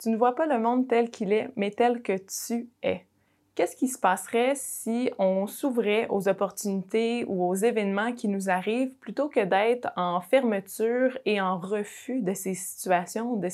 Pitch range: 190-240 Hz